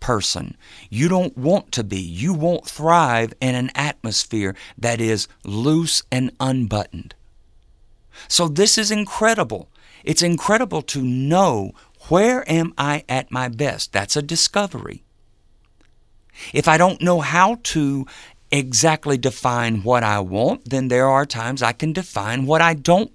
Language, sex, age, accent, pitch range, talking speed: English, male, 50-69, American, 115-165 Hz, 145 wpm